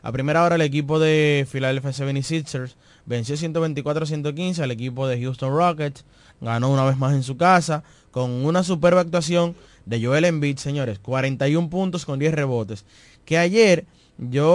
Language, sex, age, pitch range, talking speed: Spanish, male, 20-39, 125-160 Hz, 155 wpm